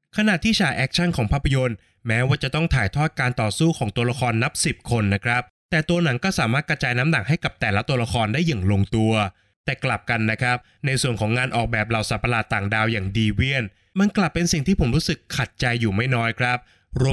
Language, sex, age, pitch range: Thai, male, 20-39, 110-150 Hz